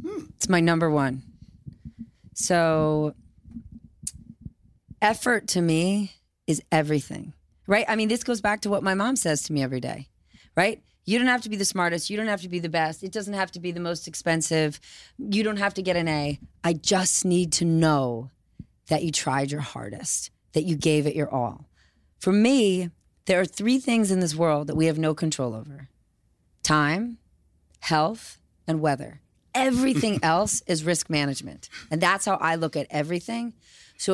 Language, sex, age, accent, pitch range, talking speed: English, female, 30-49, American, 155-215 Hz, 180 wpm